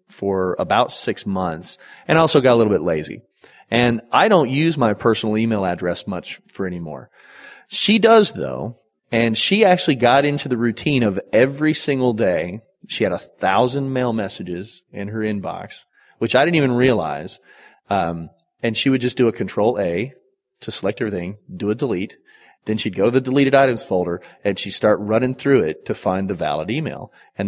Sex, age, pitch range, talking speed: male, 30-49, 100-130 Hz, 185 wpm